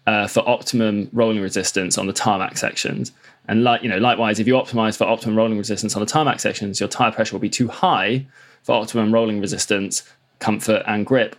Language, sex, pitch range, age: English, male, 105-120 Hz, 20-39